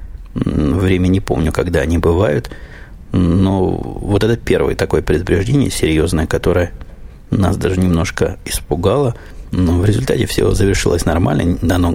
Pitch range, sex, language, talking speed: 85-95 Hz, male, Russian, 125 wpm